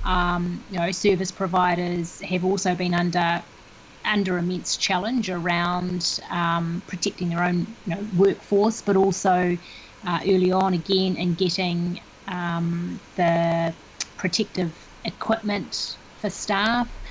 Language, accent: English, Australian